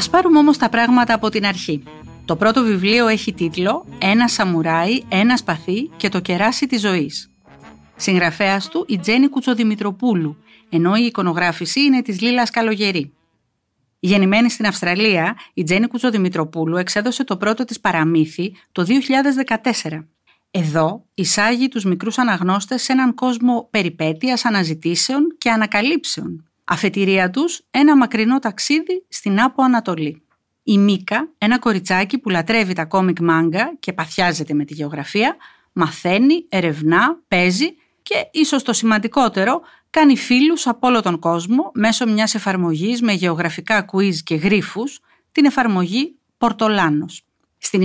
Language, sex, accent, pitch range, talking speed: Greek, female, native, 180-250 Hz, 135 wpm